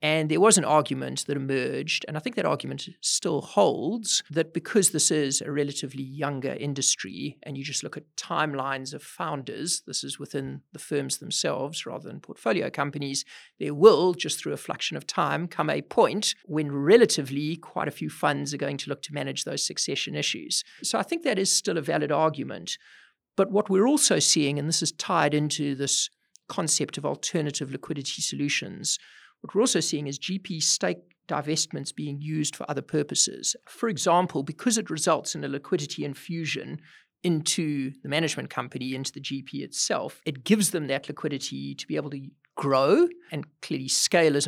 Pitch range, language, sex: 140-175 Hz, English, male